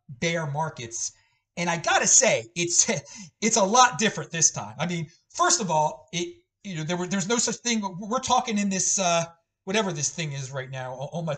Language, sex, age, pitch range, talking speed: English, male, 30-49, 165-225 Hz, 215 wpm